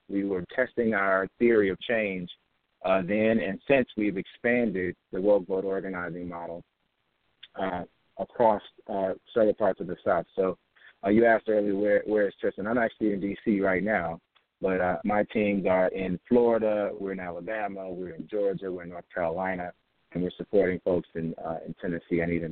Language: English